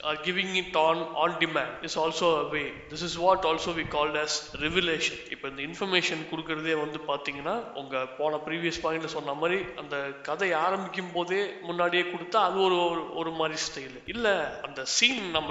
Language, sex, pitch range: Thai, male, 155-180 Hz